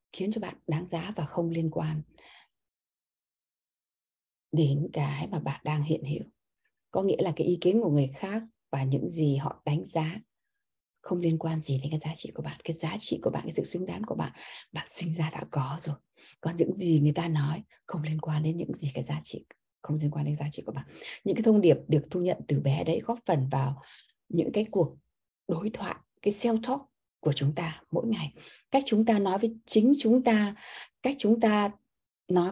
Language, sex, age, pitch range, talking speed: Vietnamese, female, 20-39, 155-225 Hz, 220 wpm